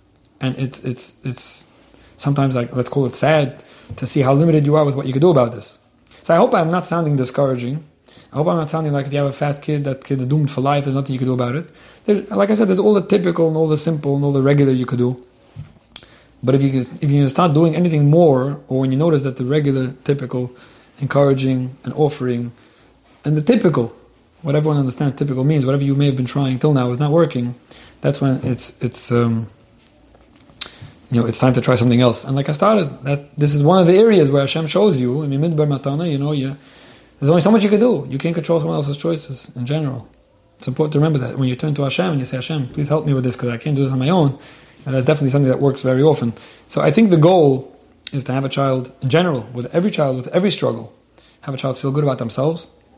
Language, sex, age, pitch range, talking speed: English, male, 30-49, 130-155 Hz, 250 wpm